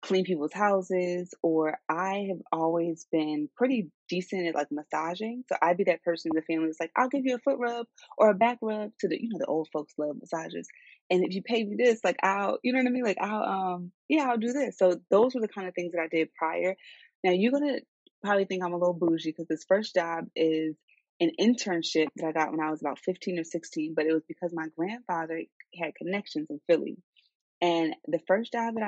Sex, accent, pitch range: female, American, 165-220 Hz